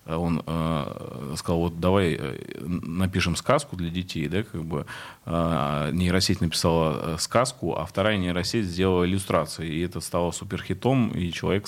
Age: 30-49